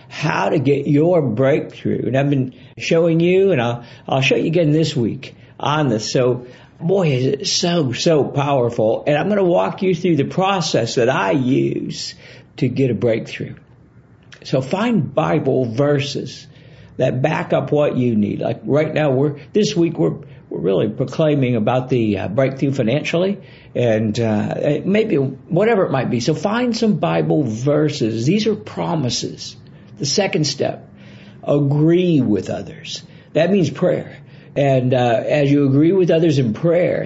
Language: English